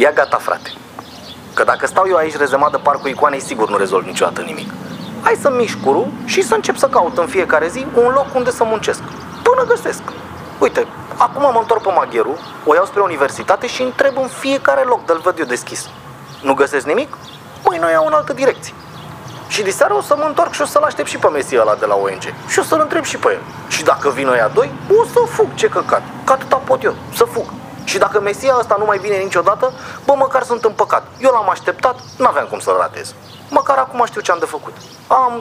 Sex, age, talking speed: male, 30-49, 220 wpm